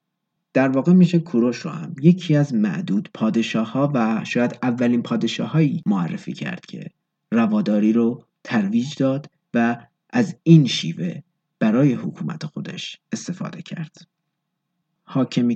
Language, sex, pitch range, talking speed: Persian, male, 130-185 Hz, 125 wpm